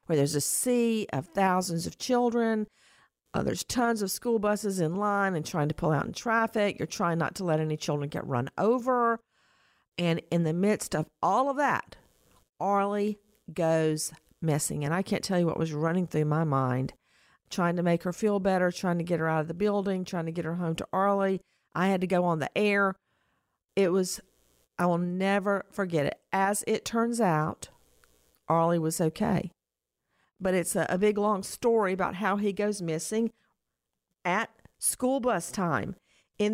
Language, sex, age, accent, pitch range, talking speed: English, female, 50-69, American, 155-205 Hz, 185 wpm